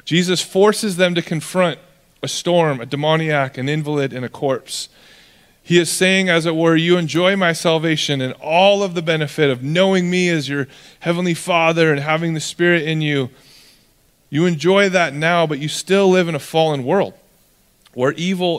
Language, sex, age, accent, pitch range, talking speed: English, male, 30-49, American, 135-170 Hz, 180 wpm